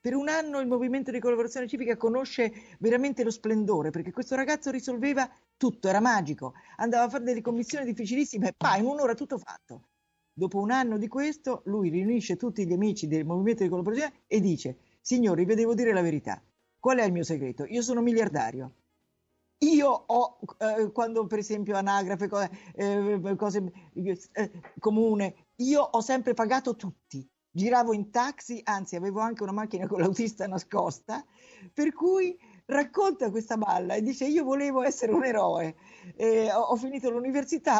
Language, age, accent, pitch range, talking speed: Italian, 50-69, native, 190-260 Hz, 165 wpm